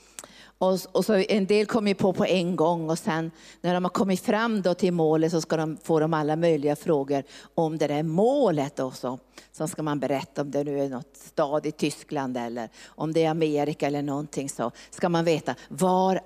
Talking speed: 210 wpm